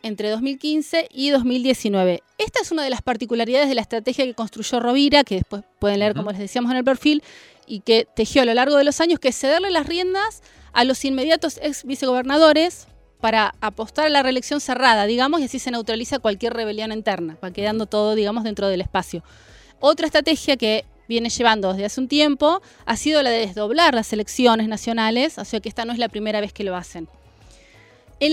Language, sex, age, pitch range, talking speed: Spanish, female, 20-39, 220-290 Hz, 205 wpm